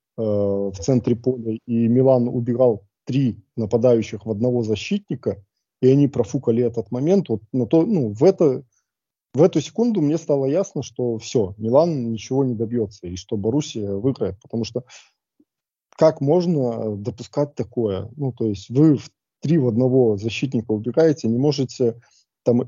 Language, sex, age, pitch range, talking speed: Russian, male, 20-39, 105-135 Hz, 155 wpm